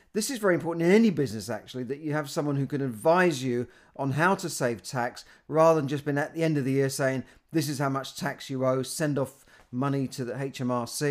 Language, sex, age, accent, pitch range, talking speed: English, male, 40-59, British, 125-155 Hz, 245 wpm